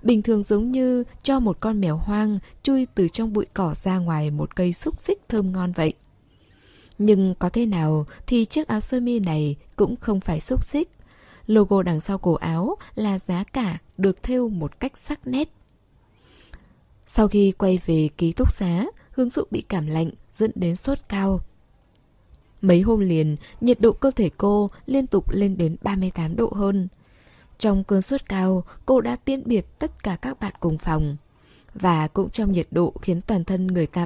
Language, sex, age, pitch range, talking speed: Vietnamese, female, 10-29, 170-225 Hz, 190 wpm